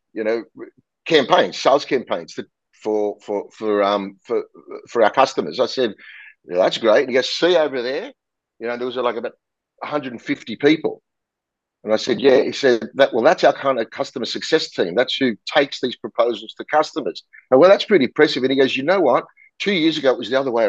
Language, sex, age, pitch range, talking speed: English, male, 50-69, 110-165 Hz, 210 wpm